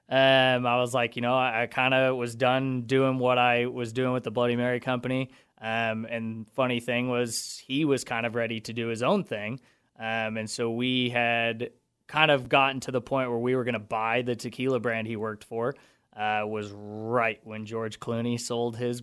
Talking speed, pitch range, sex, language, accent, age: 210 wpm, 115-130 Hz, male, English, American, 20-39